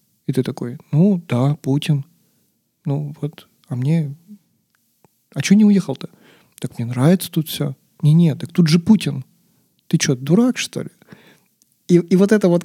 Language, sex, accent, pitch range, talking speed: Russian, male, native, 145-175 Hz, 165 wpm